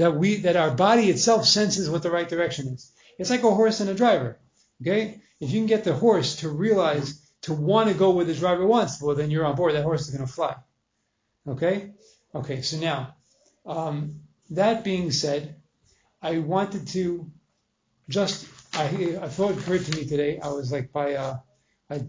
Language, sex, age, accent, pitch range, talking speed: English, male, 40-59, American, 145-180 Hz, 200 wpm